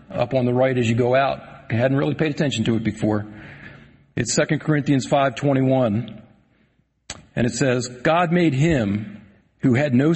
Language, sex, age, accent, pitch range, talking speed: English, male, 40-59, American, 115-145 Hz, 170 wpm